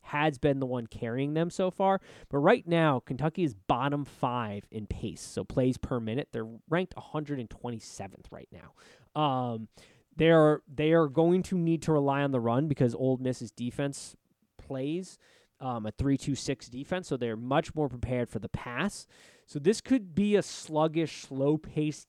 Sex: male